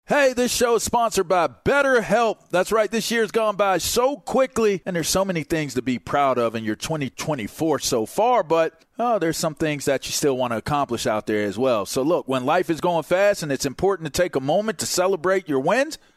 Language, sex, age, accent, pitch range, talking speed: English, male, 40-59, American, 150-210 Hz, 240 wpm